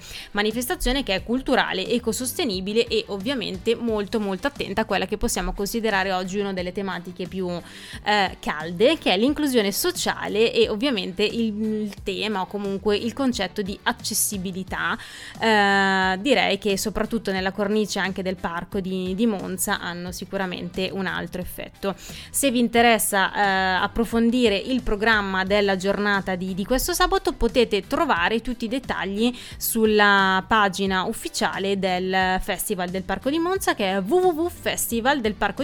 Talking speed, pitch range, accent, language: 145 wpm, 190-230 Hz, native, Italian